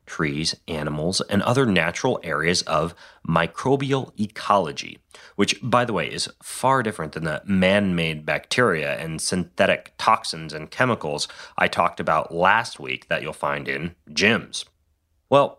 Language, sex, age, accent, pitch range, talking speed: English, male, 30-49, American, 85-115 Hz, 140 wpm